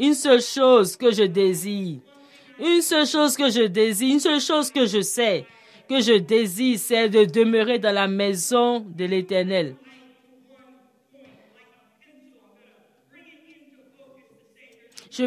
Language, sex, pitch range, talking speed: French, female, 215-270 Hz, 120 wpm